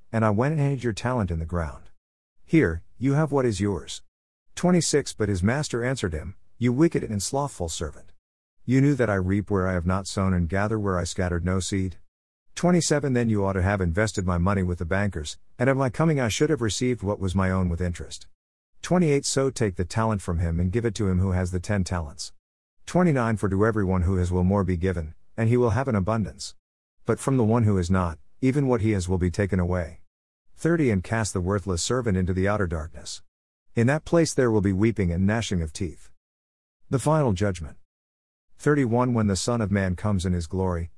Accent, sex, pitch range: American, male, 90-115 Hz